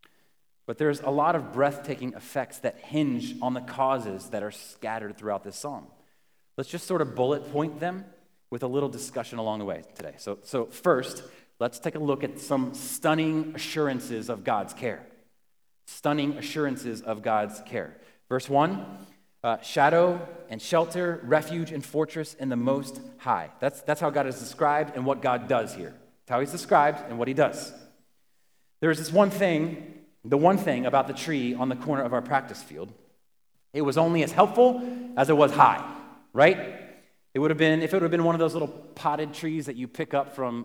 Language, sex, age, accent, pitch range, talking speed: English, male, 30-49, American, 125-155 Hz, 195 wpm